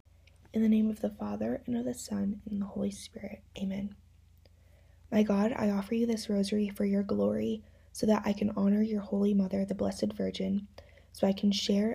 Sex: female